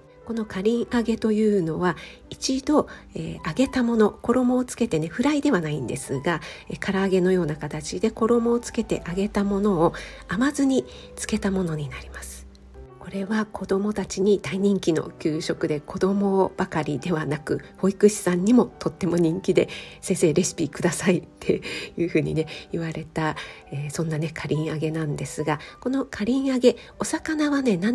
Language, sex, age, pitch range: Japanese, female, 40-59, 160-230 Hz